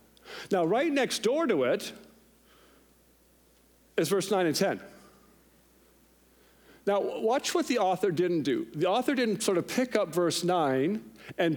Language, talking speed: English, 145 wpm